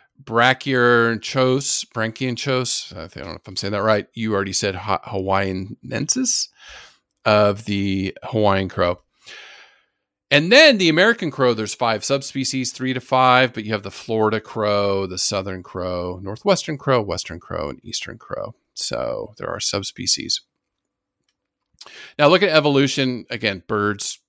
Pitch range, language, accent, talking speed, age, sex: 100-135 Hz, English, American, 140 wpm, 40-59, male